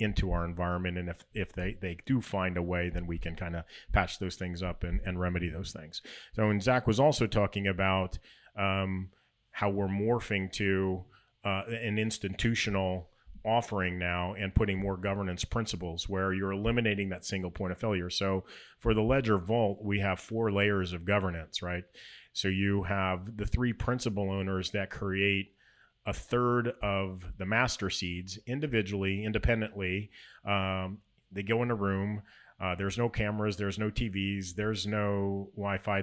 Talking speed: 170 wpm